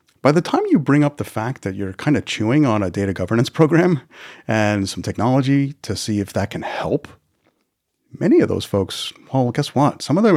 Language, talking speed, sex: English, 215 wpm, male